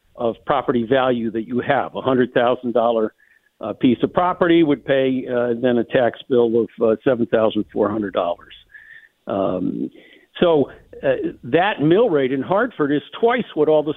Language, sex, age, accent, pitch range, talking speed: English, male, 60-79, American, 125-165 Hz, 175 wpm